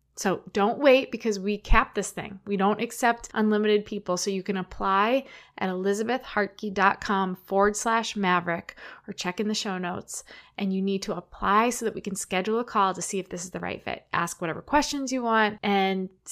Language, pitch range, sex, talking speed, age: English, 195-240 Hz, female, 200 wpm, 20-39